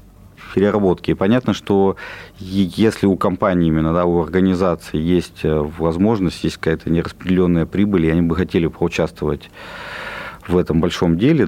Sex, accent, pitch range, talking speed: male, native, 85-100 Hz, 125 wpm